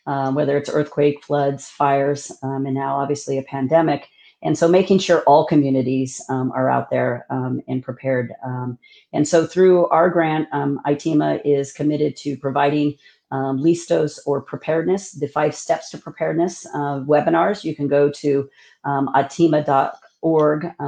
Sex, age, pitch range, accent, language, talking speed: female, 40-59, 140-160 Hz, American, English, 155 wpm